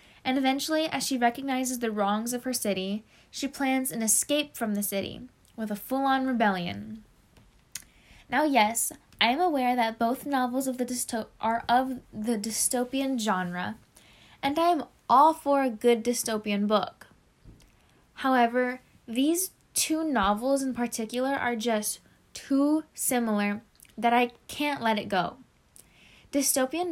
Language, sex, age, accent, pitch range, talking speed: English, female, 10-29, American, 215-260 Hz, 140 wpm